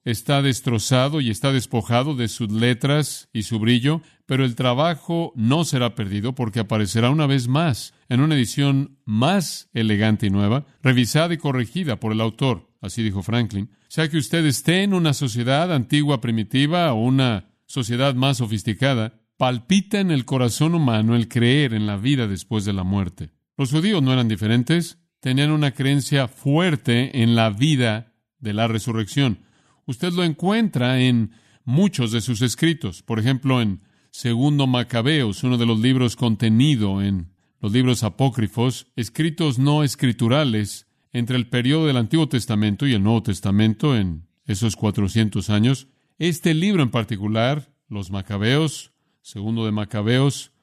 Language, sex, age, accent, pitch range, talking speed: Spanish, male, 50-69, Mexican, 110-145 Hz, 155 wpm